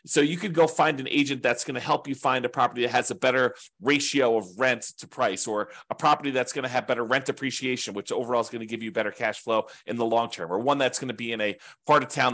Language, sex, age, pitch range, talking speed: English, male, 30-49, 115-150 Hz, 285 wpm